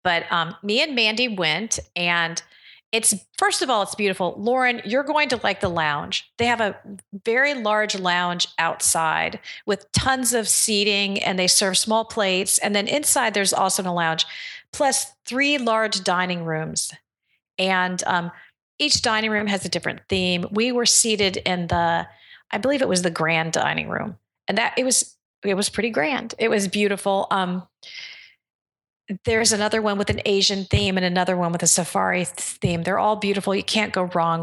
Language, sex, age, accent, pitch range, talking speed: English, female, 40-59, American, 180-225 Hz, 180 wpm